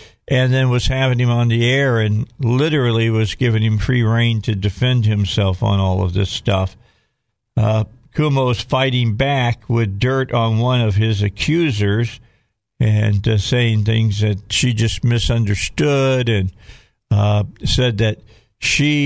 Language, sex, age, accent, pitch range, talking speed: English, male, 50-69, American, 110-125 Hz, 150 wpm